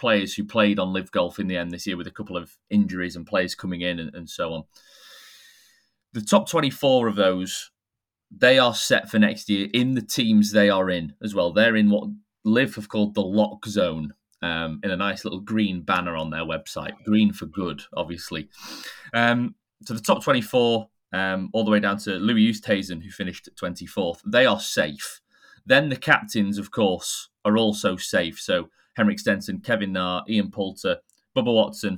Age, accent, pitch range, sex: 30-49, British, 95-115 Hz, male